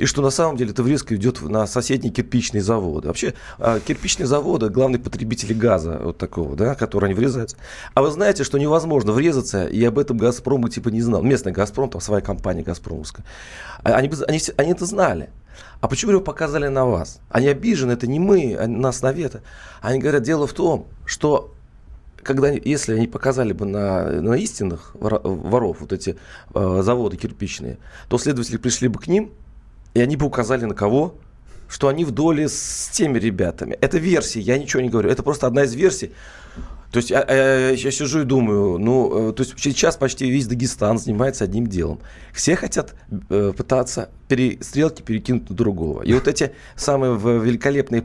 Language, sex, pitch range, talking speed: Russian, male, 105-135 Hz, 180 wpm